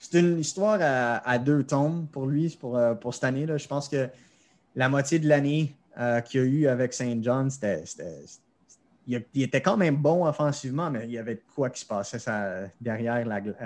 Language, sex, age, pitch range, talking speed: French, male, 30-49, 120-145 Hz, 215 wpm